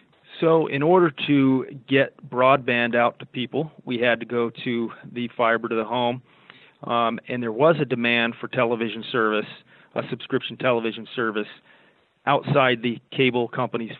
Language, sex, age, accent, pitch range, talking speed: English, male, 40-59, American, 115-130 Hz, 155 wpm